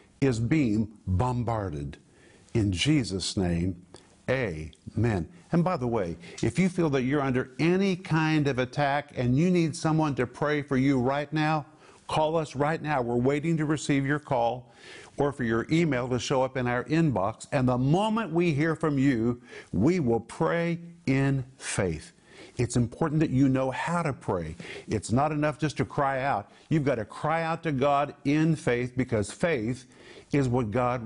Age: 50-69